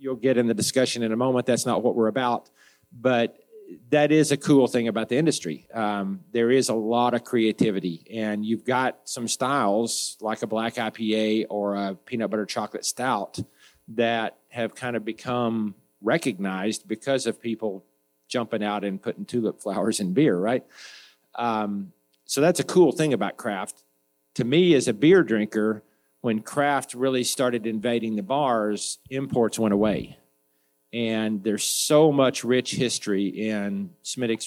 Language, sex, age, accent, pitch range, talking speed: English, male, 50-69, American, 105-125 Hz, 165 wpm